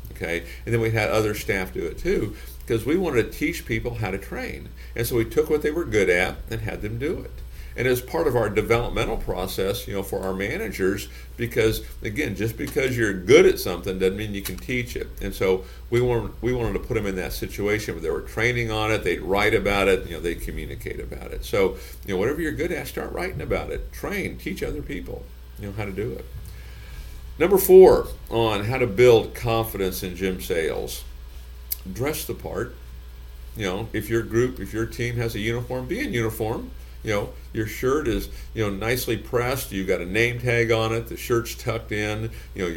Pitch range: 85-120 Hz